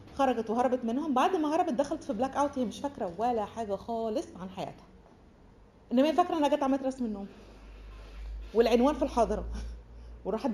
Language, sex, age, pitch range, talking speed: Arabic, female, 30-49, 195-255 Hz, 170 wpm